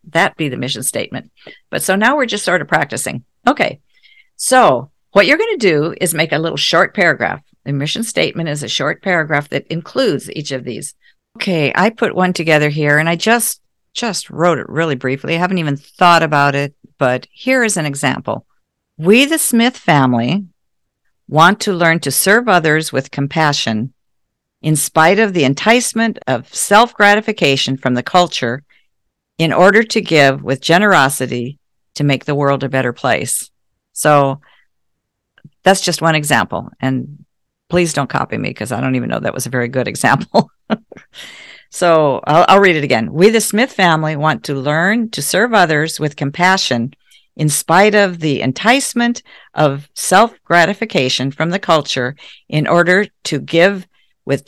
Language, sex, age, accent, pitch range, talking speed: English, female, 50-69, American, 140-195 Hz, 165 wpm